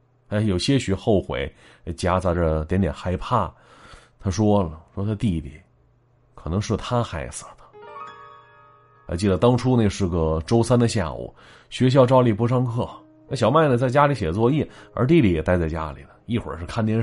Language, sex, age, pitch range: Chinese, male, 30-49, 95-130 Hz